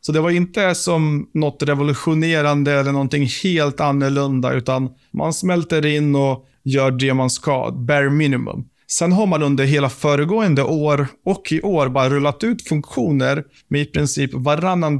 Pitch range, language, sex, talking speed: 135-165 Hz, Swedish, male, 160 wpm